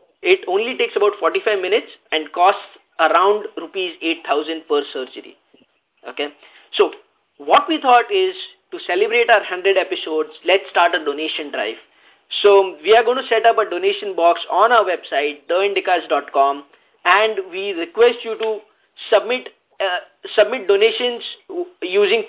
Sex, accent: male, Indian